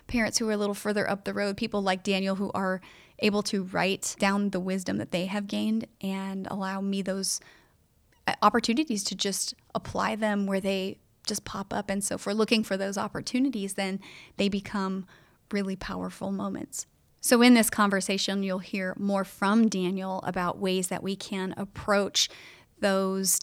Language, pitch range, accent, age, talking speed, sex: English, 185-210 Hz, American, 30-49, 175 wpm, female